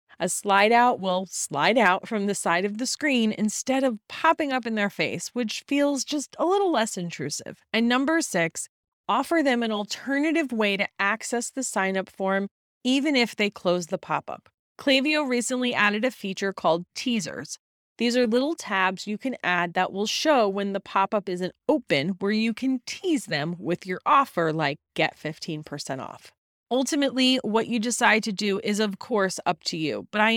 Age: 30-49